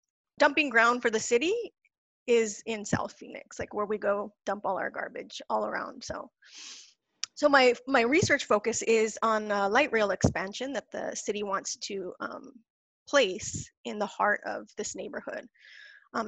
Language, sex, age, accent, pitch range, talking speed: English, female, 30-49, American, 210-250 Hz, 160 wpm